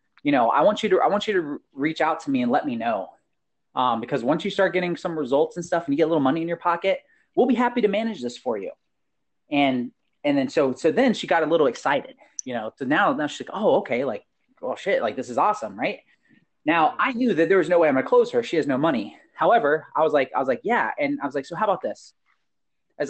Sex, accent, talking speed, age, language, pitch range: male, American, 280 wpm, 30-49, English, 145-235 Hz